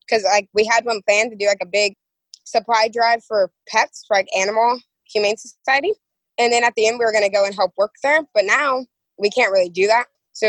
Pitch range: 200-245 Hz